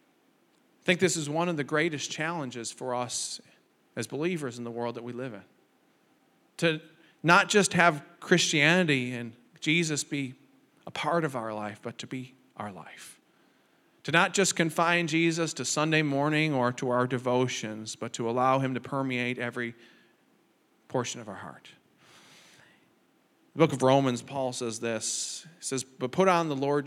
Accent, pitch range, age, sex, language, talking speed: American, 125-165 Hz, 40-59, male, English, 170 wpm